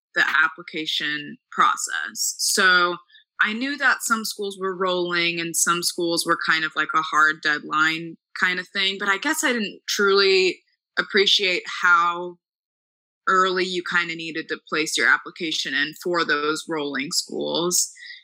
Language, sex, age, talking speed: English, female, 20-39, 150 wpm